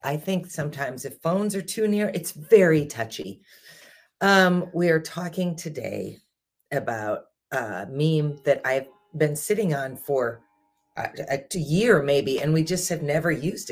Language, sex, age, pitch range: English, female, 40-59, 135-180 Hz